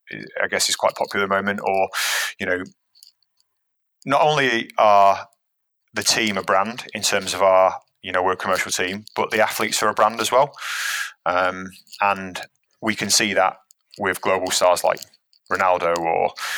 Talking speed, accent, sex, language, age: 170 wpm, British, male, English, 30-49